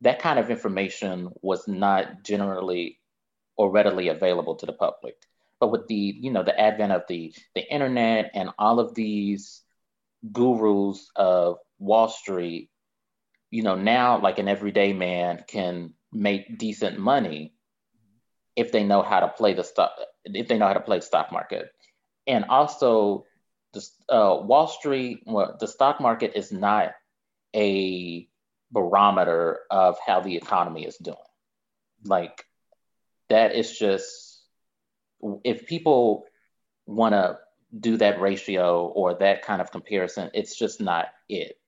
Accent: American